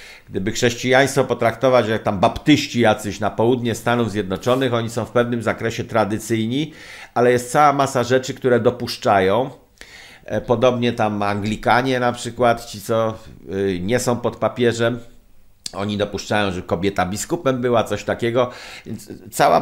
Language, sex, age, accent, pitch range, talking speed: Polish, male, 50-69, native, 115-150 Hz, 135 wpm